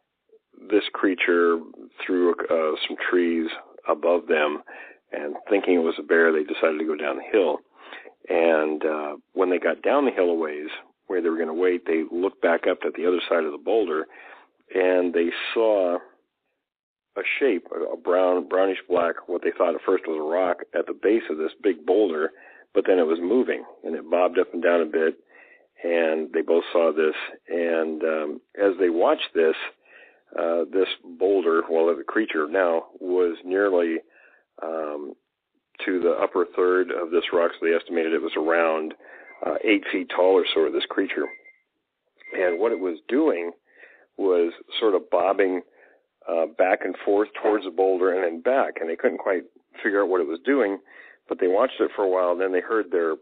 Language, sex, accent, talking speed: English, male, American, 190 wpm